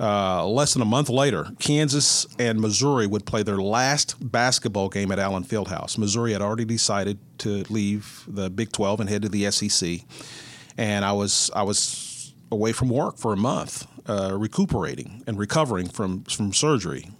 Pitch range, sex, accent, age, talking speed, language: 105-140 Hz, male, American, 40-59, 175 wpm, English